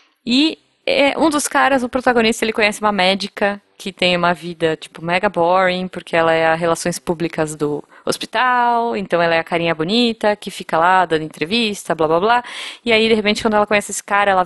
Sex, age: female, 20-39